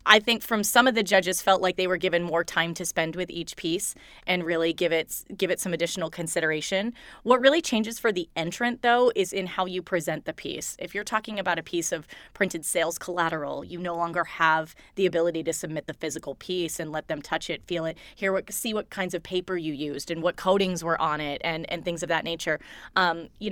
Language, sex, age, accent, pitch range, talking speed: English, female, 20-39, American, 165-190 Hz, 235 wpm